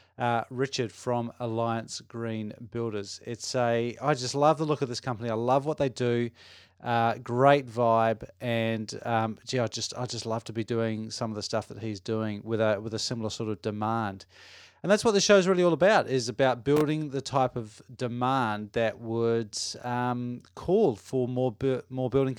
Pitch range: 110-140 Hz